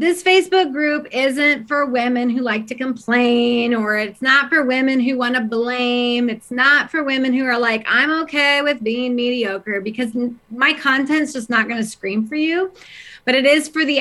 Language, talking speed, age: English, 195 wpm, 30-49